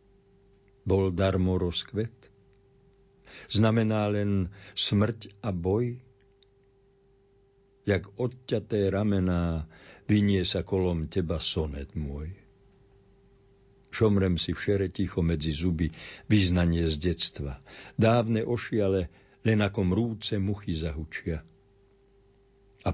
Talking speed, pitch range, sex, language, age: 90 wpm, 95-105 Hz, male, Slovak, 50-69